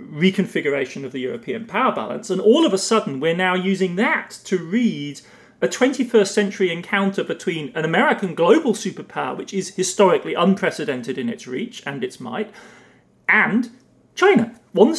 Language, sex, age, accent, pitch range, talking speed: English, male, 40-59, British, 165-215 Hz, 155 wpm